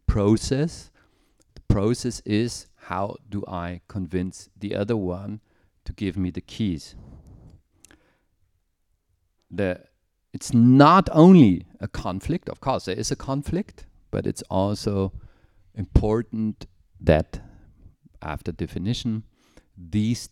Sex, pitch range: male, 85-105 Hz